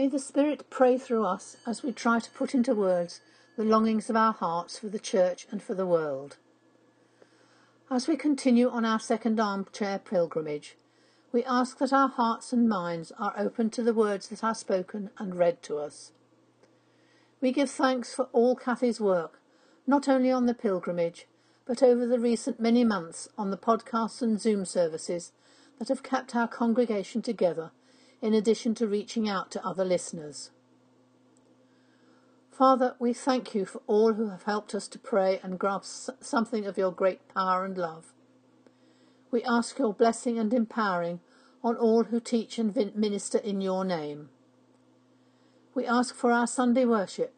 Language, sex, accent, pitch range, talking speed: English, female, British, 185-245 Hz, 165 wpm